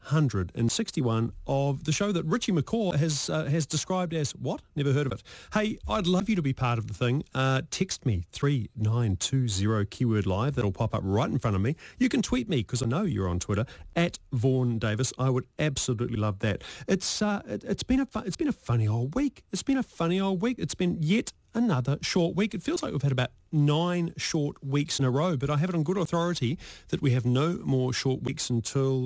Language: English